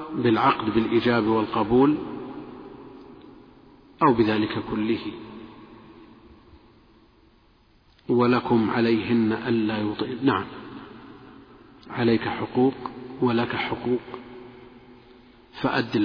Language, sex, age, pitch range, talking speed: Arabic, male, 50-69, 110-125 Hz, 60 wpm